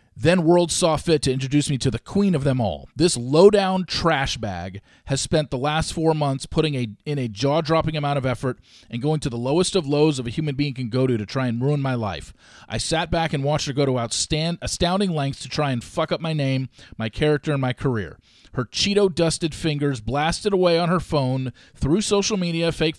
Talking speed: 225 wpm